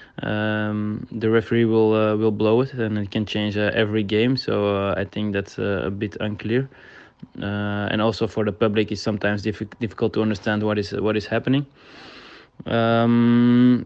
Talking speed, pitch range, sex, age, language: 180 wpm, 110-115 Hz, male, 20-39, English